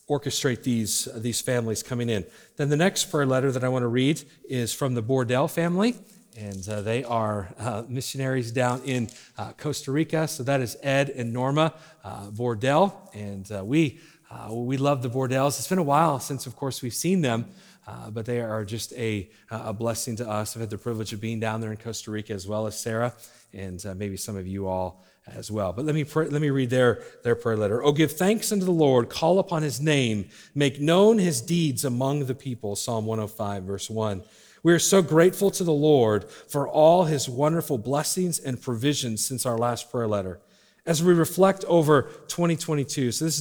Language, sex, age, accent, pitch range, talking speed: English, male, 40-59, American, 110-155 Hz, 205 wpm